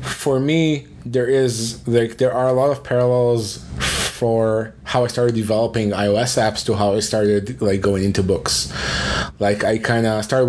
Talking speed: 175 wpm